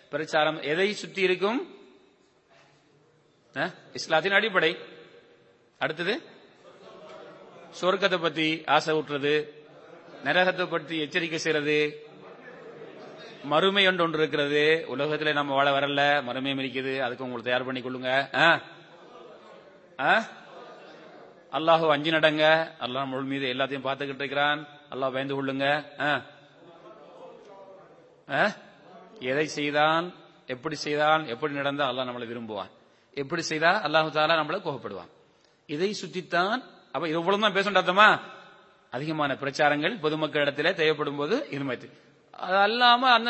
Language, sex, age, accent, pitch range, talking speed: English, male, 30-49, Indian, 145-185 Hz, 120 wpm